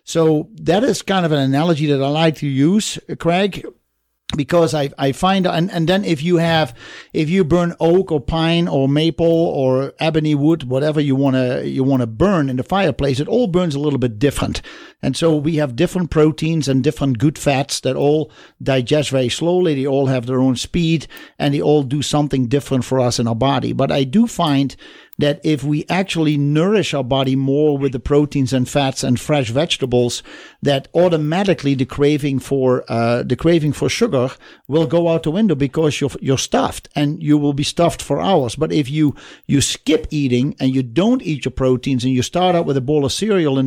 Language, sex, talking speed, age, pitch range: English, male, 210 wpm, 50-69, 135-170 Hz